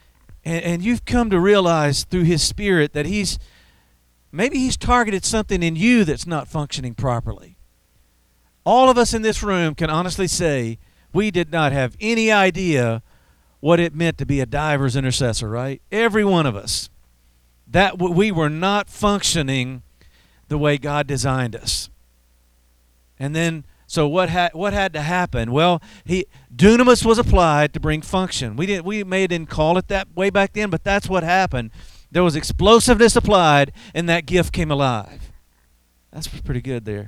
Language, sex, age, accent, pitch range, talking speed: English, male, 50-69, American, 115-190 Hz, 170 wpm